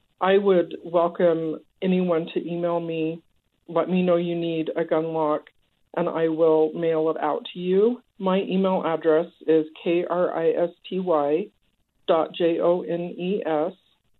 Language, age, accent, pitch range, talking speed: English, 50-69, American, 160-180 Hz, 120 wpm